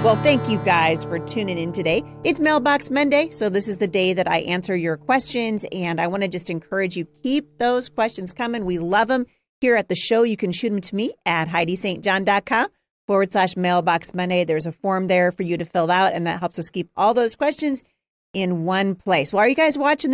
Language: English